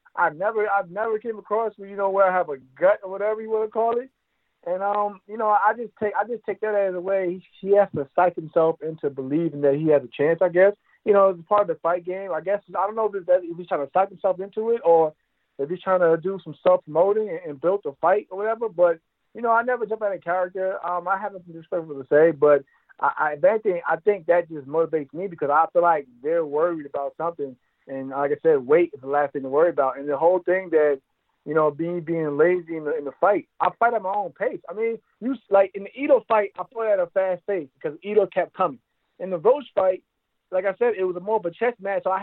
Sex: male